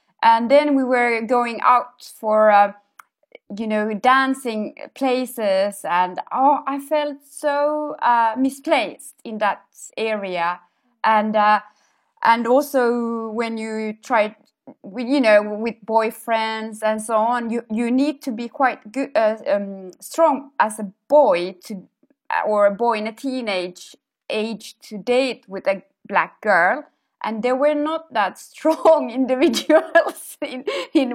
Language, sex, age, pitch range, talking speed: Finnish, female, 20-39, 215-285 Hz, 140 wpm